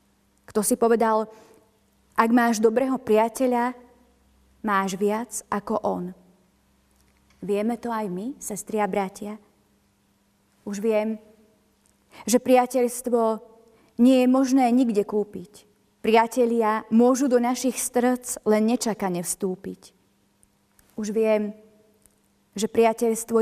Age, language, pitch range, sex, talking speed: 30-49, Slovak, 195-235 Hz, female, 100 wpm